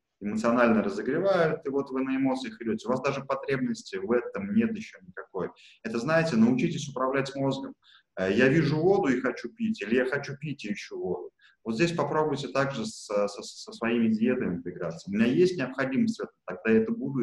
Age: 20-39